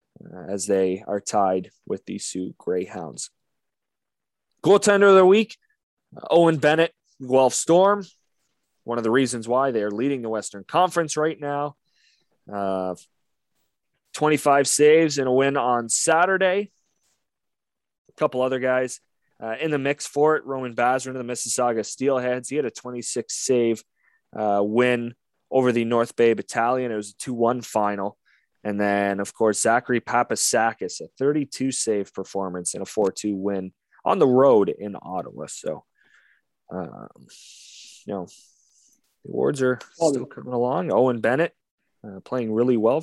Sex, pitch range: male, 110-155 Hz